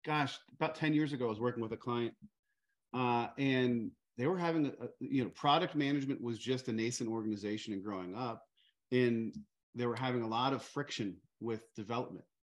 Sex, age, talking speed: male, 40-59, 190 wpm